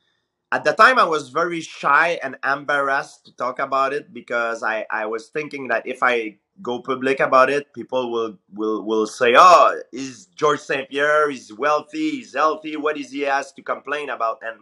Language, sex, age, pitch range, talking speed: English, male, 30-49, 125-150 Hz, 195 wpm